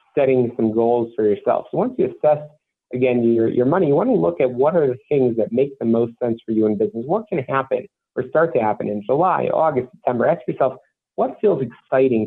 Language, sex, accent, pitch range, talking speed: English, male, American, 110-145 Hz, 230 wpm